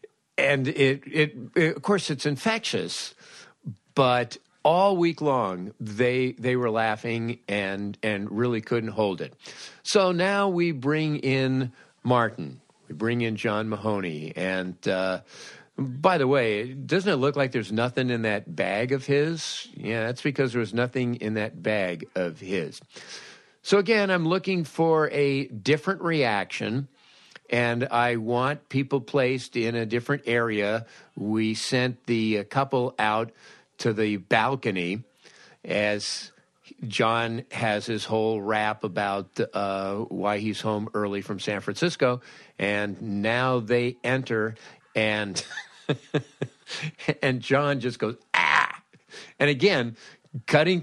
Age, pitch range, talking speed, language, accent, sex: 50-69, 110-150 Hz, 135 wpm, English, American, male